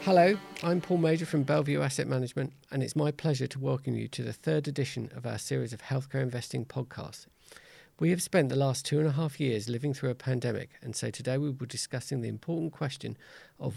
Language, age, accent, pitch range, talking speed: English, 40-59, British, 115-145 Hz, 220 wpm